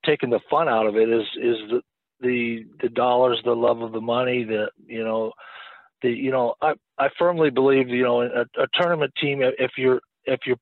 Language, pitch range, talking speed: English, 115-130 Hz, 210 wpm